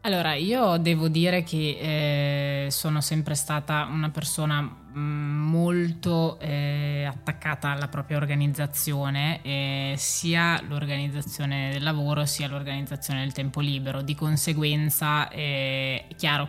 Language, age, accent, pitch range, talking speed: Italian, 20-39, native, 140-150 Hz, 115 wpm